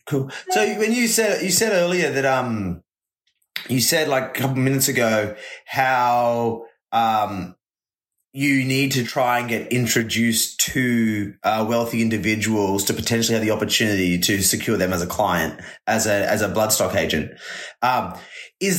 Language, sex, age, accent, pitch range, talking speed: English, male, 20-39, Australian, 110-135 Hz, 160 wpm